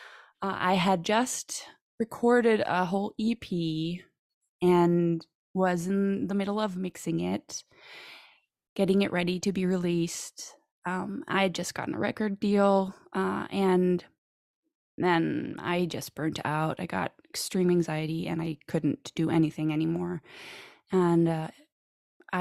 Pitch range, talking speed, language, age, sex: 165-195 Hz, 130 wpm, English, 20-39, female